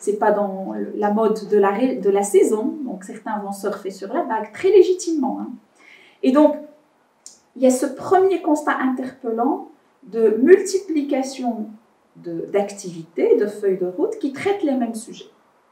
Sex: female